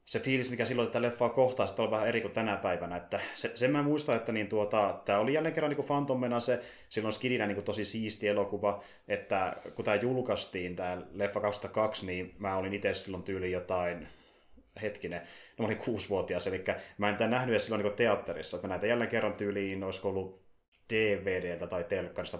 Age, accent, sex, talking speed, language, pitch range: 30-49, native, male, 195 wpm, Finnish, 95-120 Hz